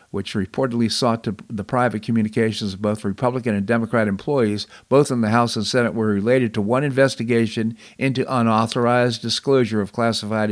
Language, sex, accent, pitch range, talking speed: English, male, American, 100-125 Hz, 165 wpm